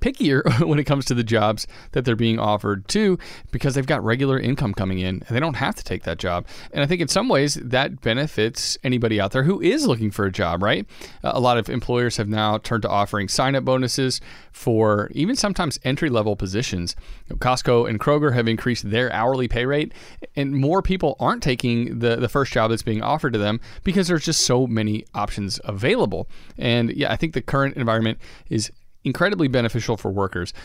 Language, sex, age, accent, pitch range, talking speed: English, male, 30-49, American, 110-145 Hz, 205 wpm